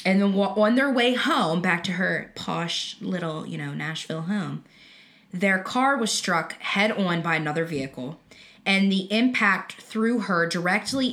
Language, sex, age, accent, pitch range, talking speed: English, female, 20-39, American, 175-220 Hz, 155 wpm